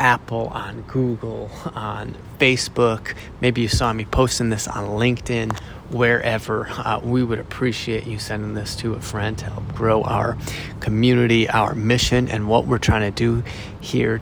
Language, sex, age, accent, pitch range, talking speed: English, male, 30-49, American, 105-125 Hz, 160 wpm